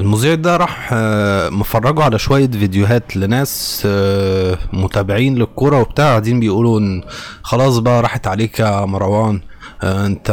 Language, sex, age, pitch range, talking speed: Arabic, male, 20-39, 100-125 Hz, 120 wpm